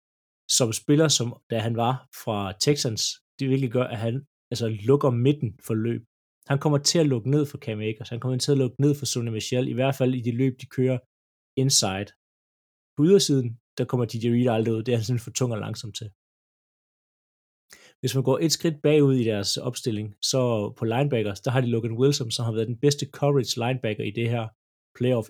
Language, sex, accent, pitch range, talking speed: Danish, male, native, 110-135 Hz, 215 wpm